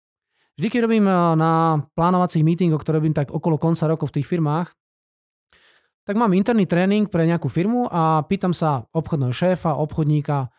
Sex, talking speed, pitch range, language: male, 160 wpm, 150-205 Hz, Slovak